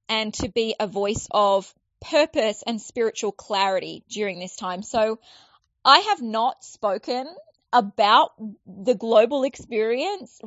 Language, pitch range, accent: English, 200-250 Hz, Australian